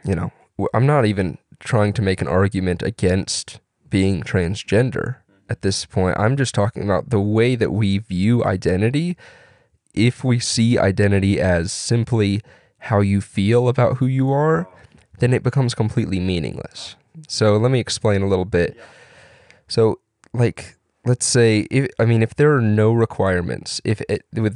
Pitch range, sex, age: 100-120 Hz, male, 20-39